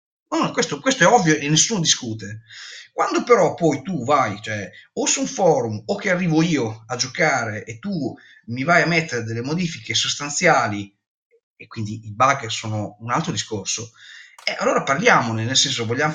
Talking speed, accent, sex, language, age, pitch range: 175 wpm, native, male, Italian, 30-49, 115-160 Hz